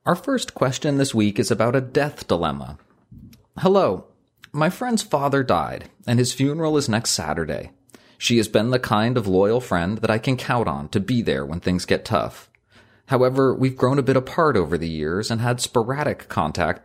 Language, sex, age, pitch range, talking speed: English, male, 30-49, 95-130 Hz, 190 wpm